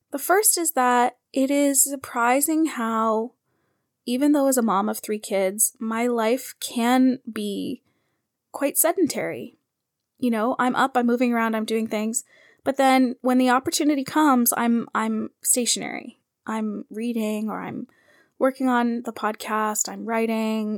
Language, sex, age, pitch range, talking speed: English, female, 20-39, 215-255 Hz, 145 wpm